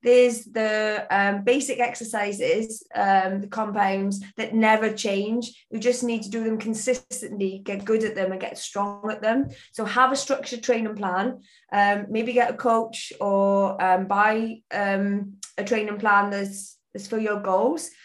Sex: female